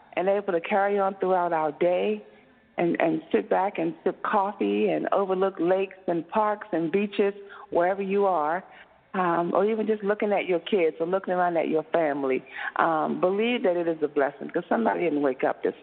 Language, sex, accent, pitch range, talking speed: English, female, American, 165-210 Hz, 195 wpm